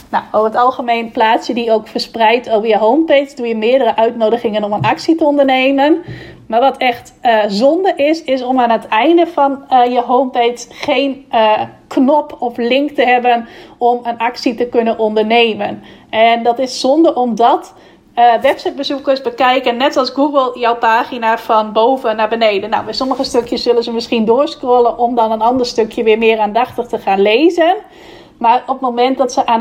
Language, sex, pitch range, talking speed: Dutch, female, 225-265 Hz, 185 wpm